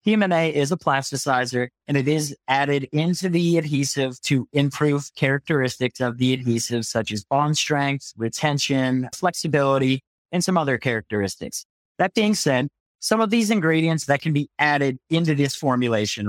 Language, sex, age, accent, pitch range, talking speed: English, male, 30-49, American, 130-165 Hz, 150 wpm